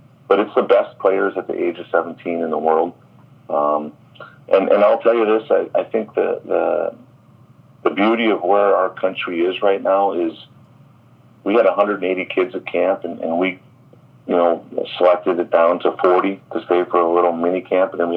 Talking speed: 200 wpm